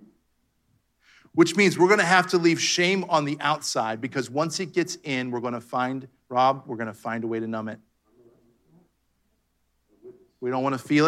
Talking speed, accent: 195 wpm, American